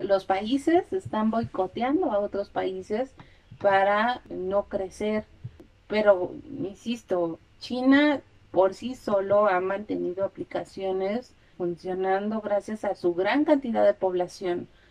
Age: 30-49